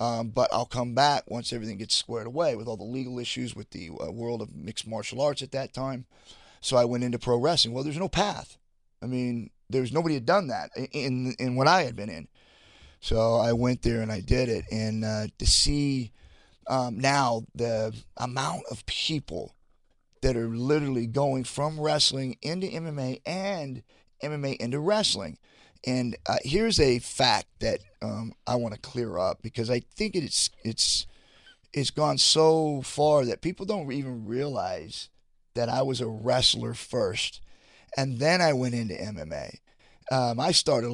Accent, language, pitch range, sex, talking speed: American, English, 115-135 Hz, male, 175 wpm